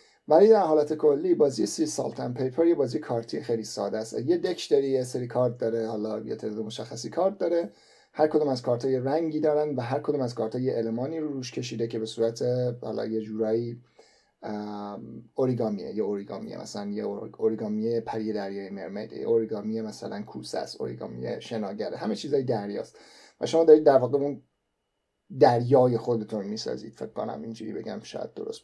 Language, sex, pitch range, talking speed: Persian, male, 115-150 Hz, 175 wpm